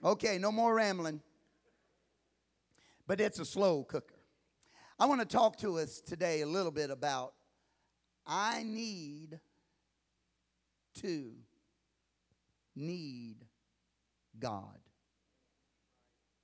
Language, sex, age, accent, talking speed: English, male, 50-69, American, 90 wpm